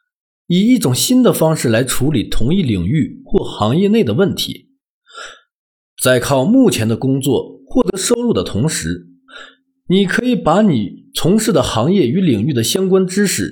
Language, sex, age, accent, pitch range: Chinese, male, 50-69, native, 135-225 Hz